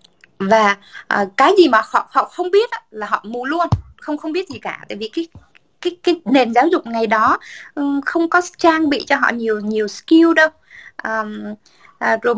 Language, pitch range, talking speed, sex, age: Vietnamese, 220-310 Hz, 210 wpm, female, 20-39